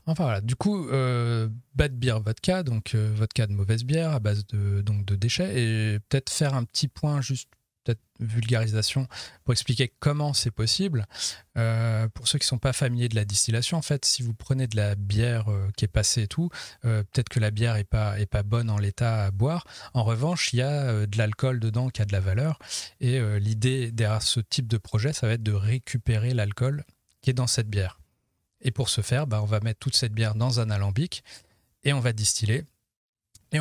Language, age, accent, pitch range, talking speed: French, 30-49, French, 105-130 Hz, 225 wpm